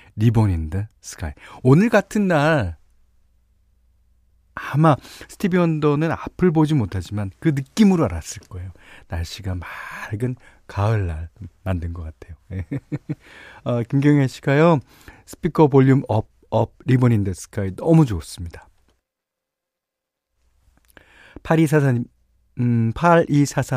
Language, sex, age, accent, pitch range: Korean, male, 40-59, native, 95-145 Hz